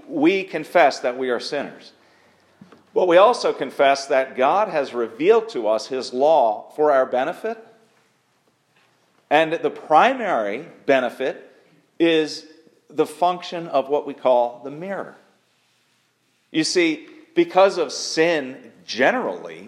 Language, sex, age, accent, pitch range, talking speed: English, male, 50-69, American, 135-205 Hz, 120 wpm